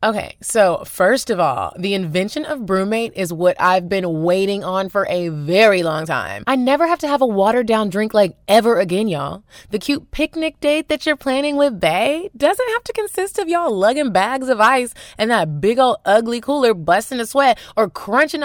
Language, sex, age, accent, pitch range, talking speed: English, female, 20-39, American, 180-275 Hz, 200 wpm